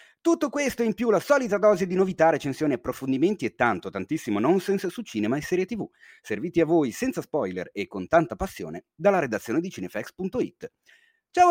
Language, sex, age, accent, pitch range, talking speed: Italian, male, 30-49, native, 150-230 Hz, 175 wpm